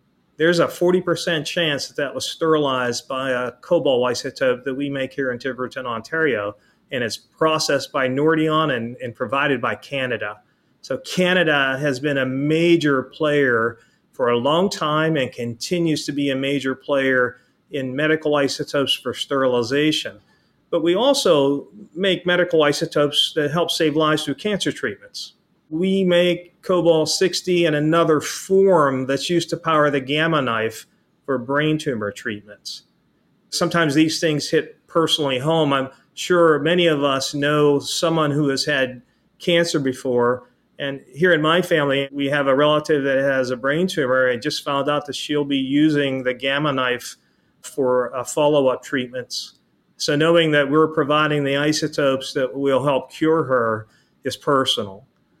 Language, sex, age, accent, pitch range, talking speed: English, male, 40-59, American, 135-160 Hz, 155 wpm